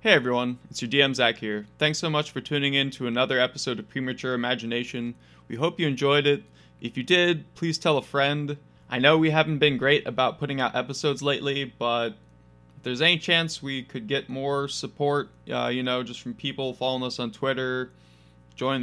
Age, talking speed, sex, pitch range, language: 20-39, 200 wpm, male, 120-145 Hz, English